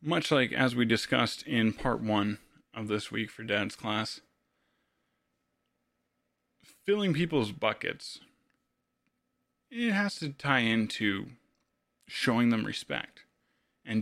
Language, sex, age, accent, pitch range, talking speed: English, male, 20-39, American, 120-155 Hz, 110 wpm